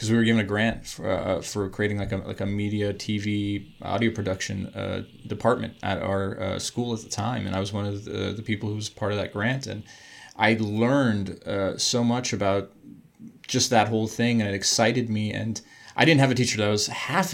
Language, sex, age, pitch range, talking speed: English, male, 20-39, 100-120 Hz, 225 wpm